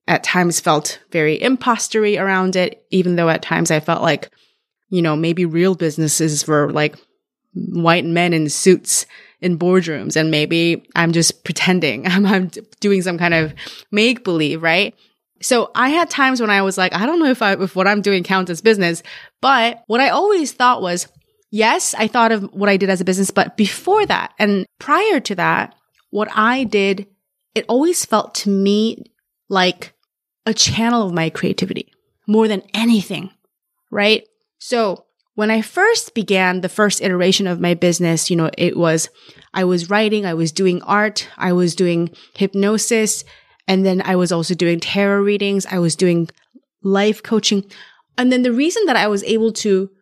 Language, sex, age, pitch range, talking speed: English, female, 20-39, 180-225 Hz, 180 wpm